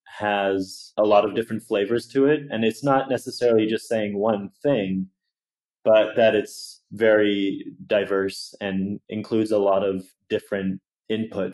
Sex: male